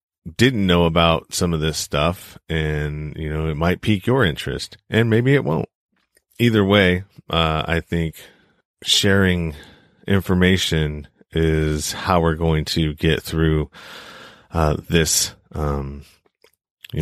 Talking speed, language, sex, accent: 130 wpm, English, male, American